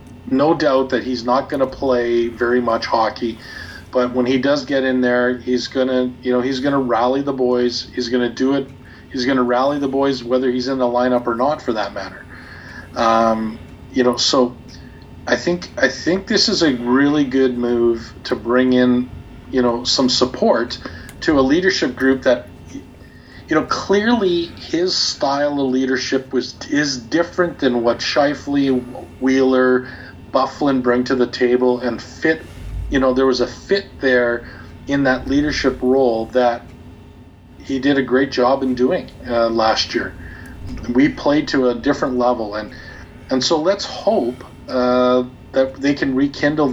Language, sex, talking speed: English, male, 175 wpm